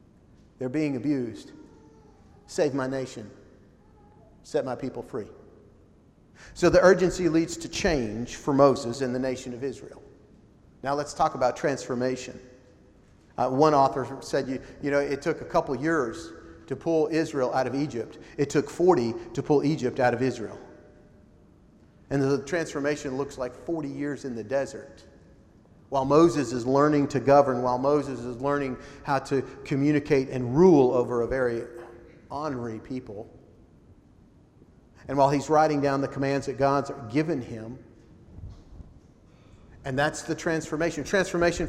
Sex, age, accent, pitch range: male, 40-59, American, 125-145 Hz